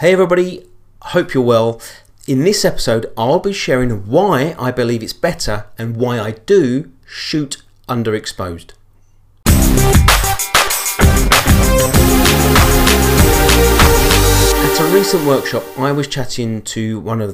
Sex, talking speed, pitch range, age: male, 110 wpm, 100-130 Hz, 40-59